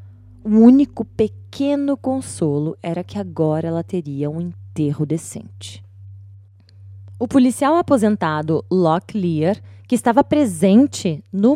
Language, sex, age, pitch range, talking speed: Portuguese, female, 20-39, 170-235 Hz, 110 wpm